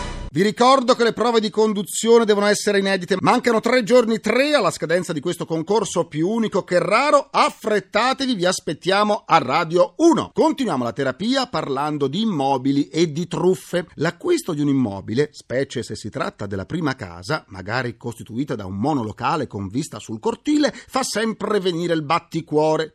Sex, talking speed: male, 165 wpm